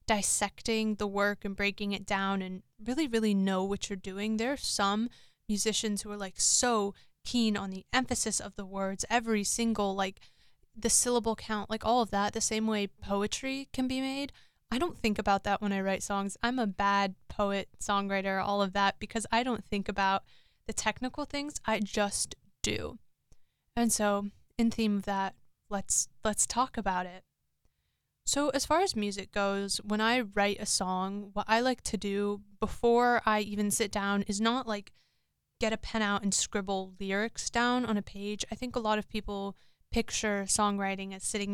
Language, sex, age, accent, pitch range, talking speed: English, female, 20-39, American, 200-230 Hz, 190 wpm